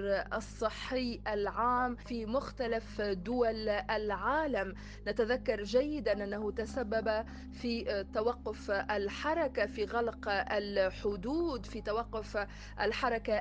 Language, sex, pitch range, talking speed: Arabic, female, 210-255 Hz, 85 wpm